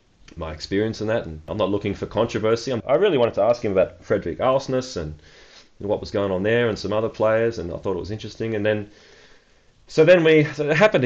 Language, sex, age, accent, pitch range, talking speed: English, male, 30-49, Australian, 95-115 Hz, 235 wpm